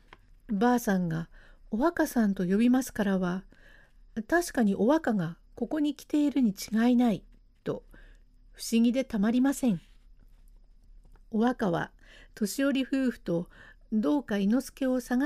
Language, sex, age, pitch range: Japanese, female, 50-69, 200-255 Hz